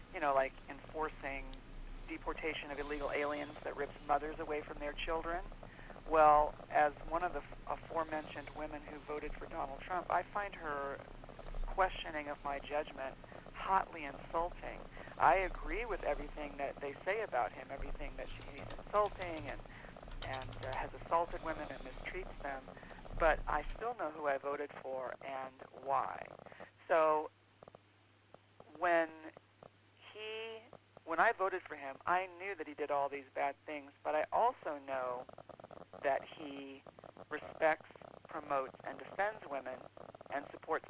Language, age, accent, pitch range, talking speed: English, 50-69, American, 135-160 Hz, 145 wpm